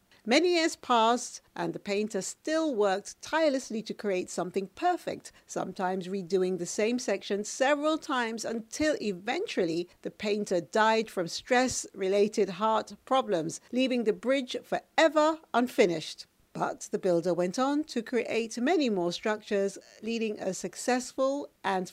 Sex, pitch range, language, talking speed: female, 180-250 Hz, English, 130 wpm